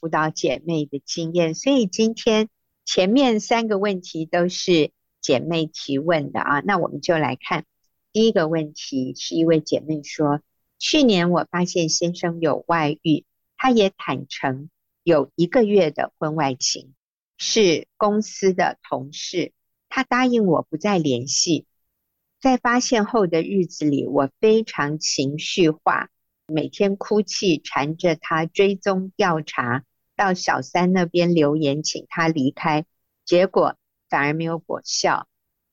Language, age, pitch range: Chinese, 50-69, 150-195 Hz